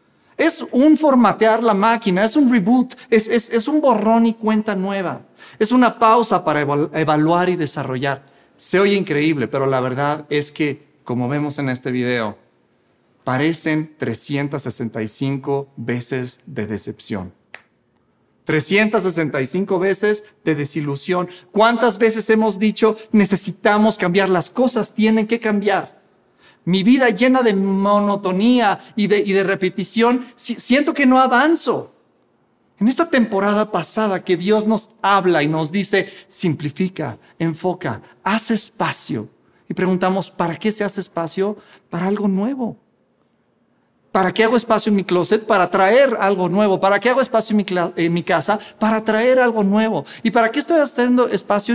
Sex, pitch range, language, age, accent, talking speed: male, 160-225 Hz, Spanish, 40-59, Mexican, 150 wpm